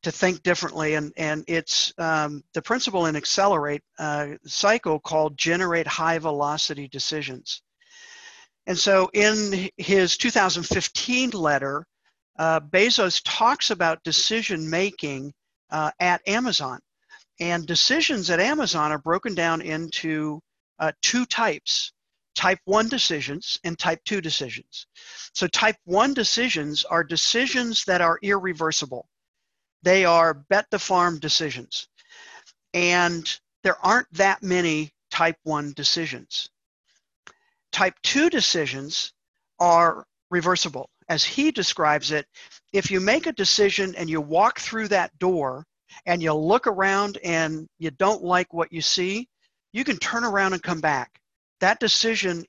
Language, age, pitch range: English, 50-69, 155-205 Hz